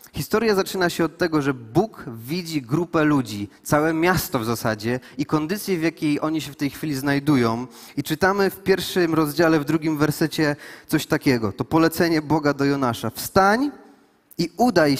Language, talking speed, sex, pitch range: Polish, 170 wpm, male, 155-200 Hz